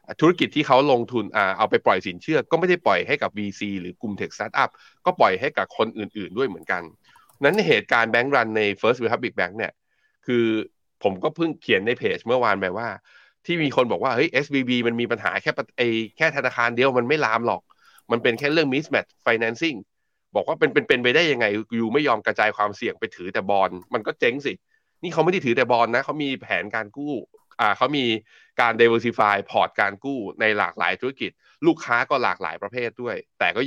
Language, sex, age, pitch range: Thai, male, 20-39, 100-135 Hz